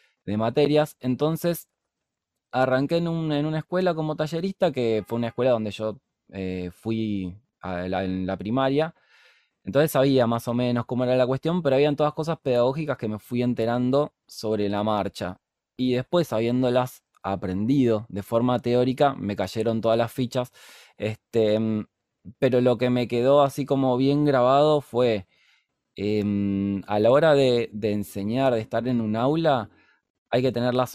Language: Spanish